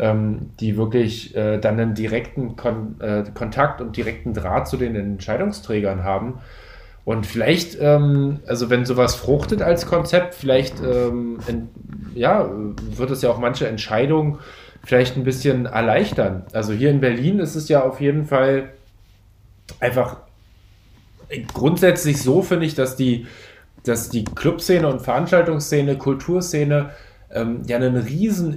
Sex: male